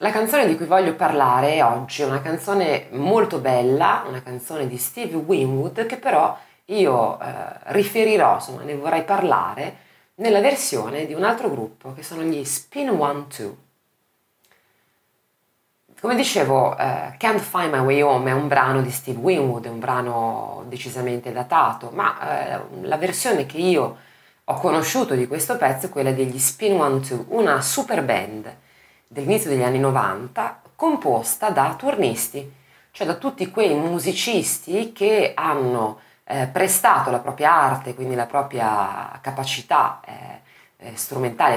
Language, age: Italian, 30-49